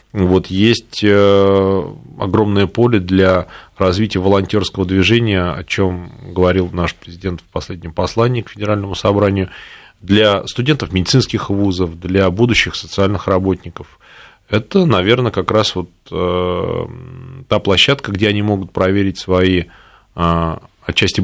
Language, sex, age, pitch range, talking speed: Russian, male, 20-39, 90-110 Hz, 115 wpm